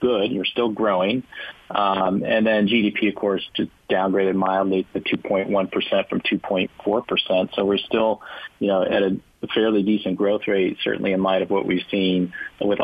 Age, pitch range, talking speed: 30-49, 95-100 Hz, 170 wpm